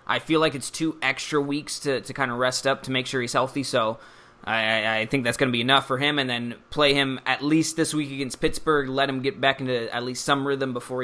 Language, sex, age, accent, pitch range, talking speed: English, male, 20-39, American, 120-145 Hz, 265 wpm